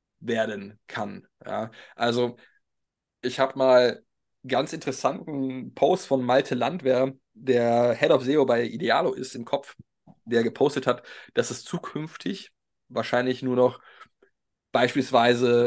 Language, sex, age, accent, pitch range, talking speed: German, male, 20-39, German, 120-140 Hz, 120 wpm